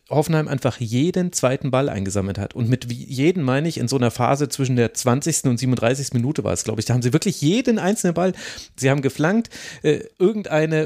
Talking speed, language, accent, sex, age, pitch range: 215 wpm, German, German, male, 30-49, 125-155 Hz